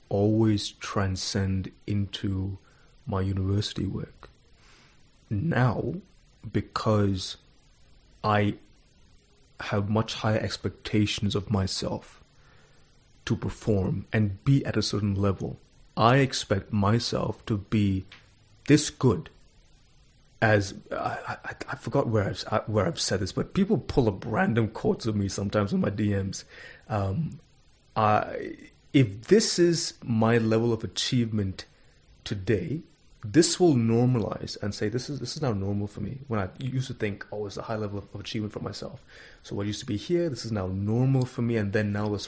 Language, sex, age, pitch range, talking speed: English, male, 30-49, 100-130 Hz, 150 wpm